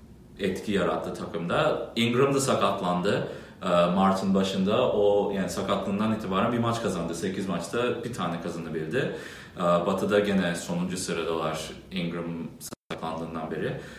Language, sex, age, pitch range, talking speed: English, male, 30-49, 95-125 Hz, 130 wpm